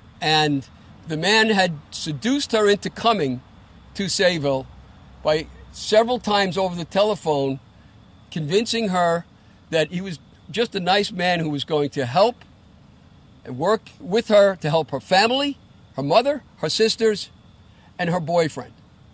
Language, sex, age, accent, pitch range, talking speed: English, male, 50-69, American, 140-190 Hz, 140 wpm